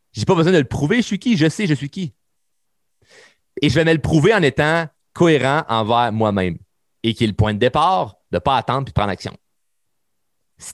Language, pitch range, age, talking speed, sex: French, 110-155 Hz, 30-49, 225 wpm, male